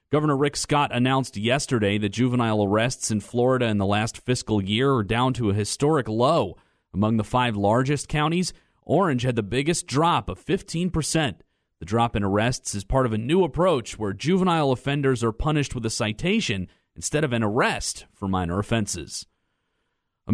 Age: 30-49